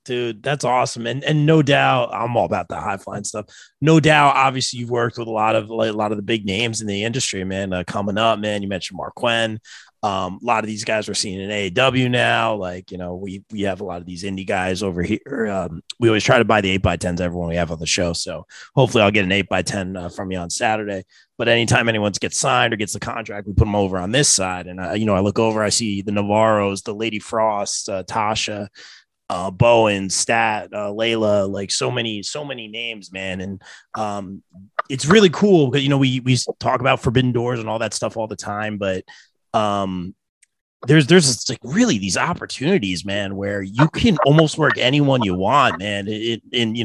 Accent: American